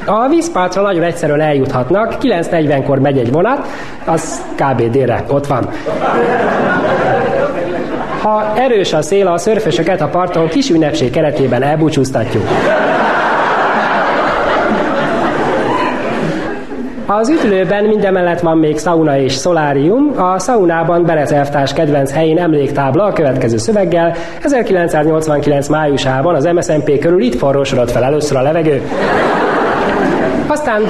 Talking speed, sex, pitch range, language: 105 wpm, male, 140-185 Hz, Hungarian